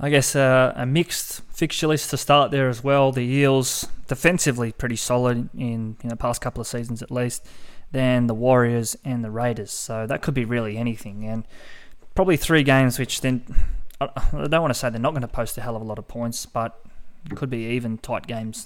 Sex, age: male, 20-39